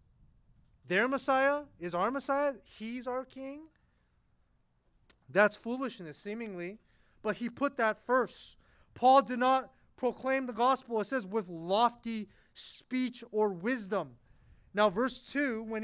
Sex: male